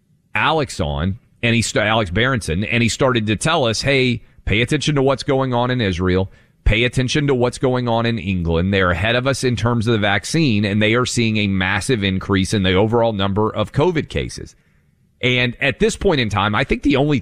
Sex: male